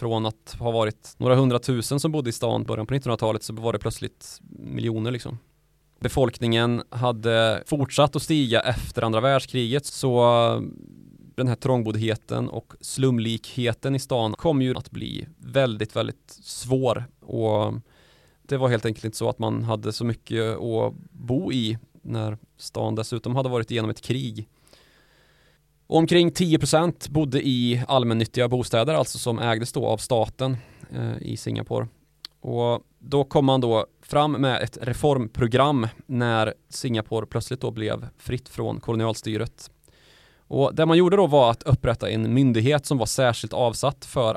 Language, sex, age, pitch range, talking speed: Swedish, male, 20-39, 115-135 Hz, 150 wpm